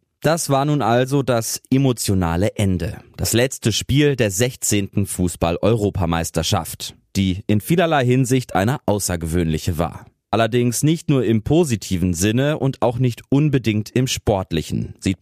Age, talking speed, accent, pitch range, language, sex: 30-49, 130 wpm, German, 90-130 Hz, German, male